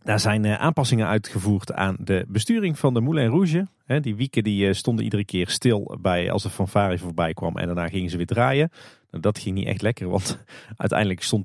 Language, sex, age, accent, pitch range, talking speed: Dutch, male, 40-59, Dutch, 100-130 Hz, 200 wpm